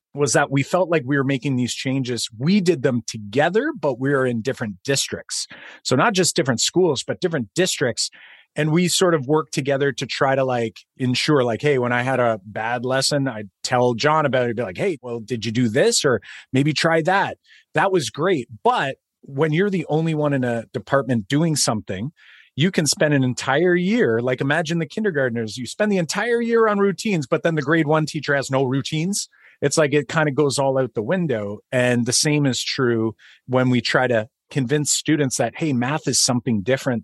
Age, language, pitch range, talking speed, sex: 30-49, English, 125-160 Hz, 215 wpm, male